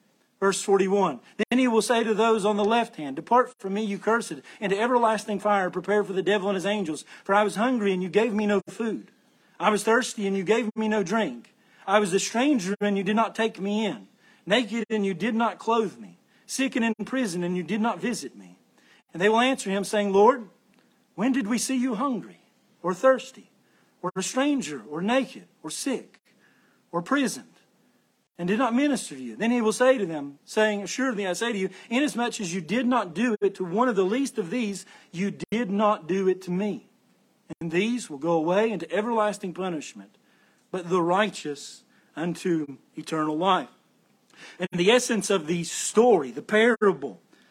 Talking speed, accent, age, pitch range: 200 wpm, American, 50-69, 190-235 Hz